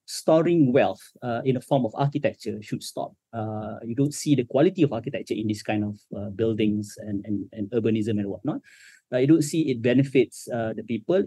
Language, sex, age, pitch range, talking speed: English, male, 30-49, 105-135 Hz, 210 wpm